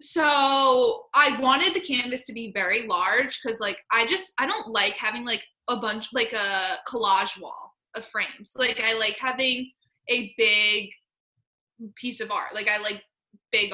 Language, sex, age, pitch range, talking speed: English, female, 20-39, 200-250 Hz, 170 wpm